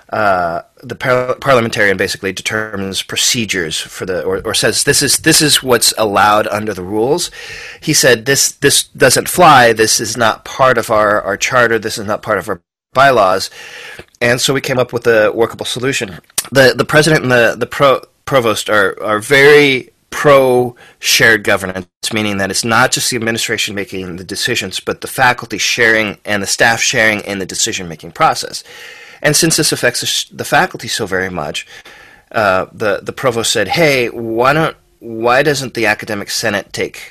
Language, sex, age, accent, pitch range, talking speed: English, male, 30-49, American, 105-140 Hz, 185 wpm